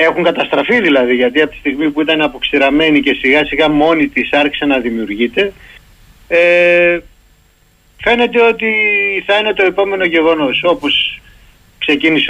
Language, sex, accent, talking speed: Greek, male, native, 135 wpm